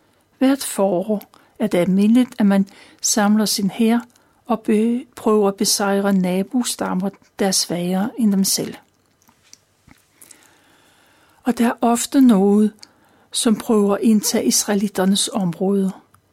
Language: Danish